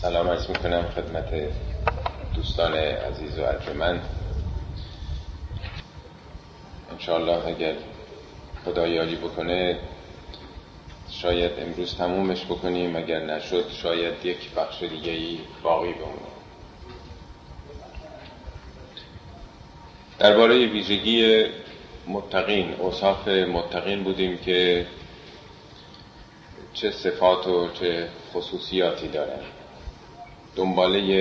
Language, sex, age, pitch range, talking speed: Persian, male, 40-59, 85-100 Hz, 75 wpm